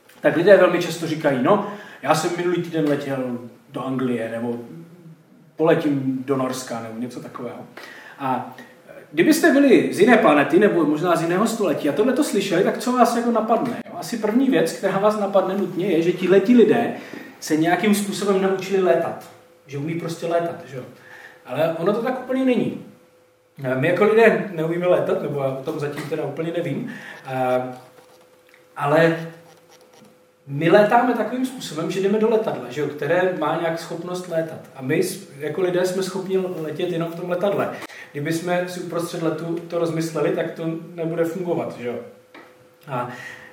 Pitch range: 160-210 Hz